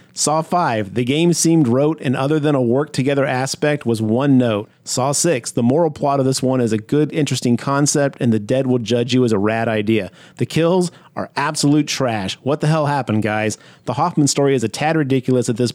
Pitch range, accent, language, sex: 125-155 Hz, American, English, male